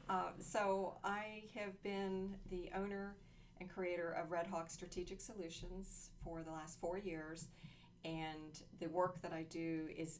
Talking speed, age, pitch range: 155 wpm, 40-59, 145-165 Hz